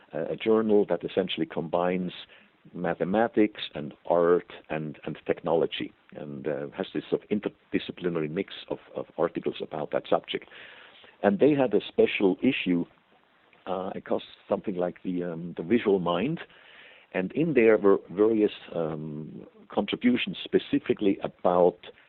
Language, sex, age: English, male, 60-79